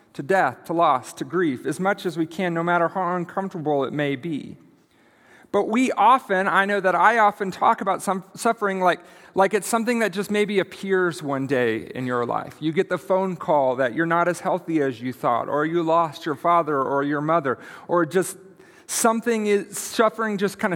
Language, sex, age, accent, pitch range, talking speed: English, male, 40-59, American, 135-195 Hz, 205 wpm